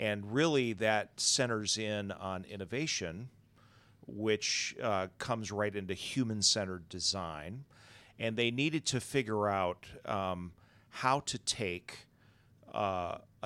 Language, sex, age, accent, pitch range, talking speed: English, male, 40-59, American, 100-120 Hz, 110 wpm